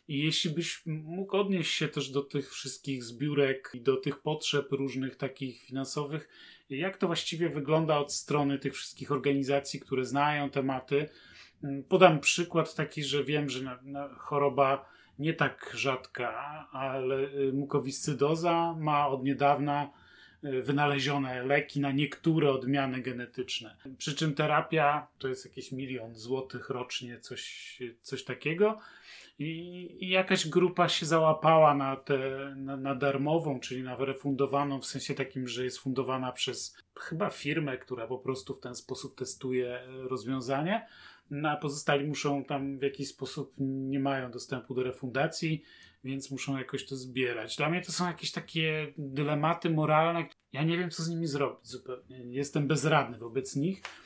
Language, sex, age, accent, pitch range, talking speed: Polish, male, 30-49, native, 135-155 Hz, 145 wpm